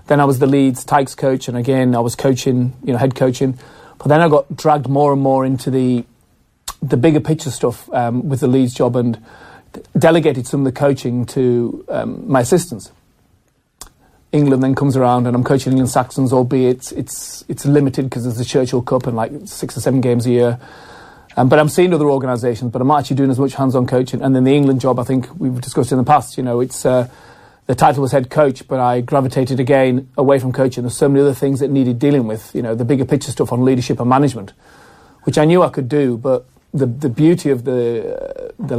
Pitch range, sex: 125-140 Hz, male